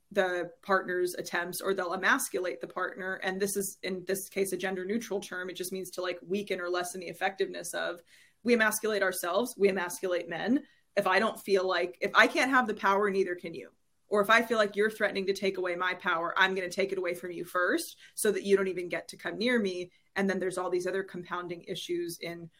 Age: 20-39